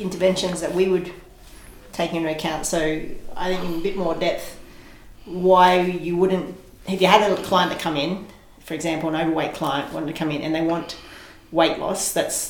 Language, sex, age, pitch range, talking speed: English, female, 30-49, 160-185 Hz, 200 wpm